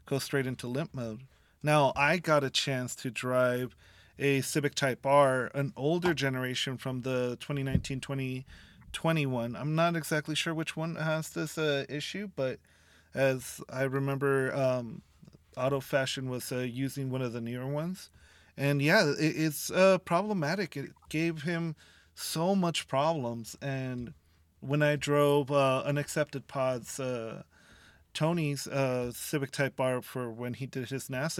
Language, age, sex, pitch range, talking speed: English, 30-49, male, 130-155 Hz, 150 wpm